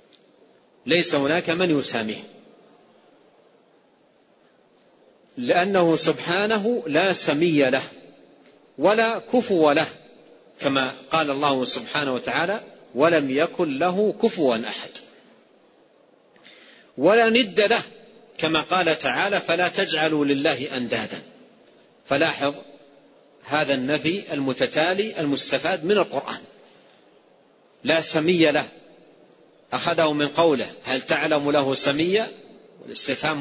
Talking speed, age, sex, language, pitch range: 90 wpm, 50-69, male, Arabic, 140-195 Hz